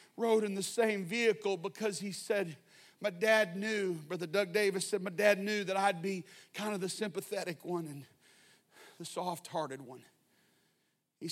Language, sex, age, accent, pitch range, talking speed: English, male, 40-59, American, 170-205 Hz, 165 wpm